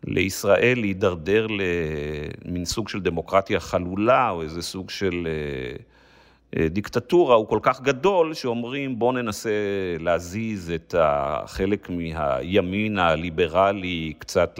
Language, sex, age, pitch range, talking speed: Hebrew, male, 50-69, 85-110 Hz, 105 wpm